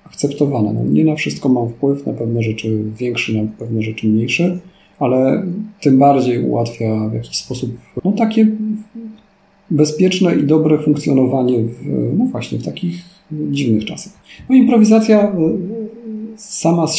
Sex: male